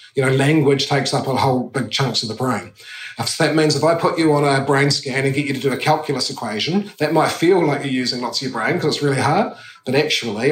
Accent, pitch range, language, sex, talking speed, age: Australian, 125-150 Hz, English, male, 270 wpm, 30-49